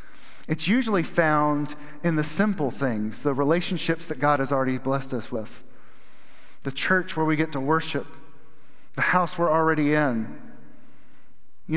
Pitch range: 140-180 Hz